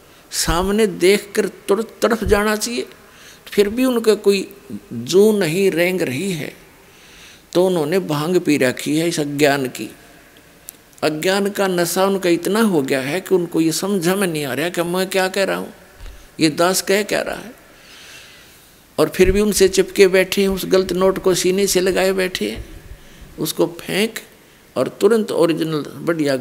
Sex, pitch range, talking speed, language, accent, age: male, 155-195 Hz, 170 wpm, Hindi, native, 50-69